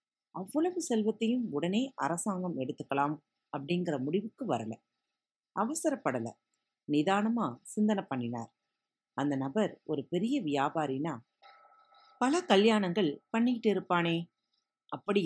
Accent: native